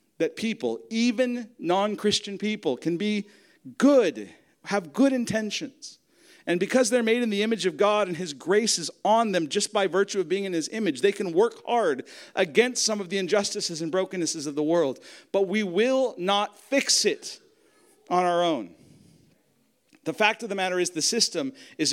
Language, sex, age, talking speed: English, male, 50-69, 180 wpm